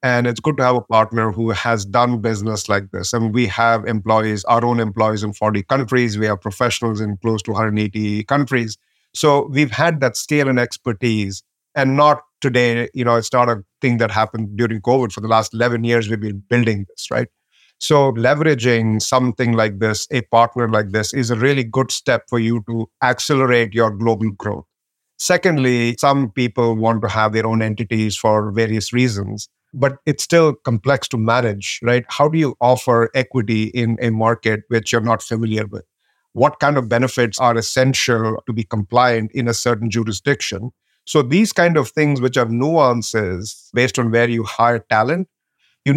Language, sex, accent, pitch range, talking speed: English, male, Indian, 110-130 Hz, 185 wpm